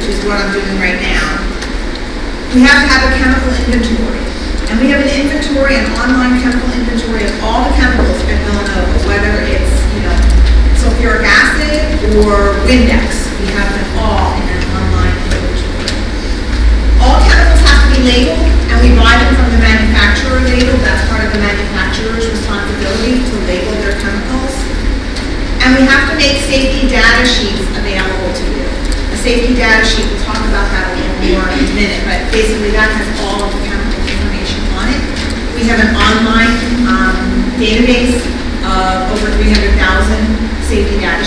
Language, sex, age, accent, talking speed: English, female, 40-59, American, 165 wpm